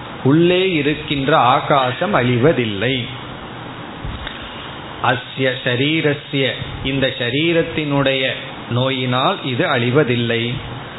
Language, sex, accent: Tamil, male, native